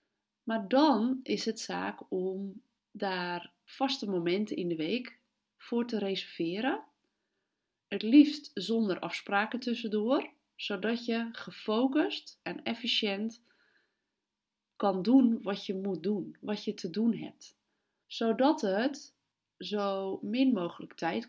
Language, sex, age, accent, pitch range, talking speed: Dutch, female, 30-49, Dutch, 195-245 Hz, 120 wpm